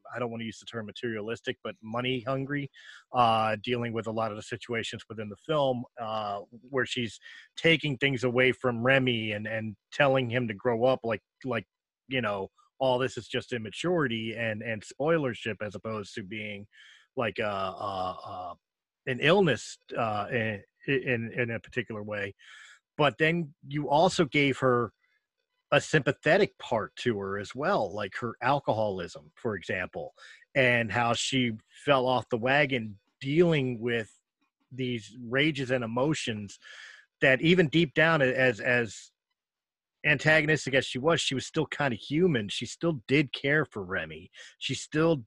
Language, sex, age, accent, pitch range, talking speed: English, male, 30-49, American, 110-140 Hz, 160 wpm